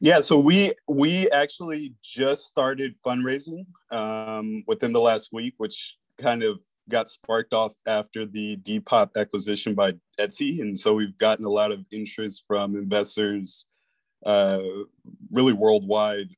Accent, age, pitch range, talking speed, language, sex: American, 20-39, 100-115 Hz, 140 wpm, English, male